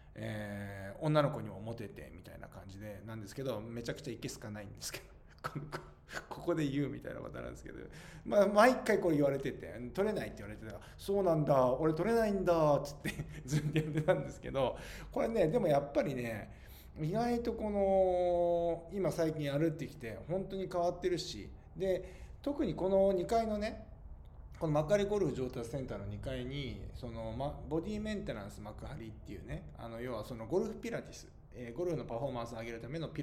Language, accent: Japanese, native